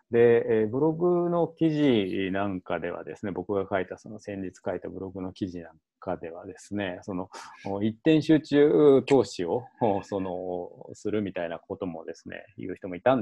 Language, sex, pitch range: Japanese, male, 95-140 Hz